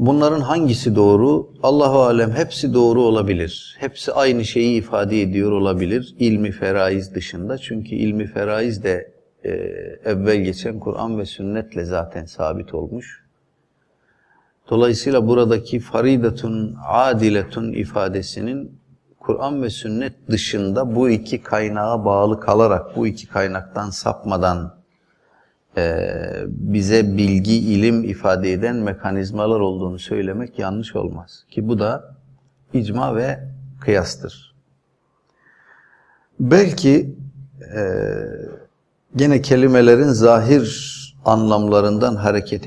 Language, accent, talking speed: Turkish, native, 100 wpm